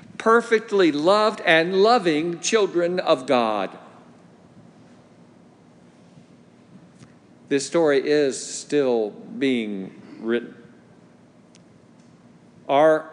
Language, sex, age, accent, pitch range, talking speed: English, male, 50-69, American, 125-180 Hz, 65 wpm